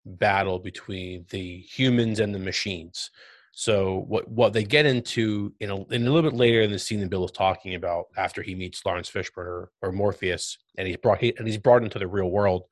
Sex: male